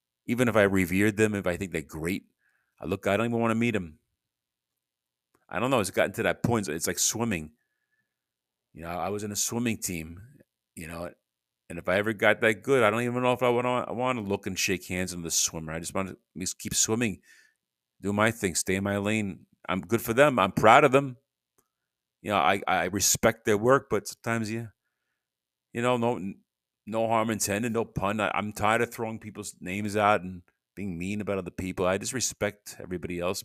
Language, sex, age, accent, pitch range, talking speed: English, male, 40-59, American, 95-115 Hz, 220 wpm